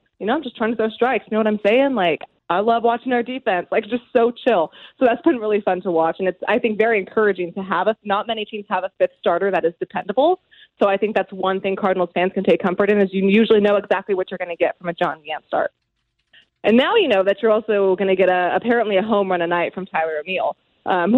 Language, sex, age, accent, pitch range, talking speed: English, female, 20-39, American, 185-235 Hz, 275 wpm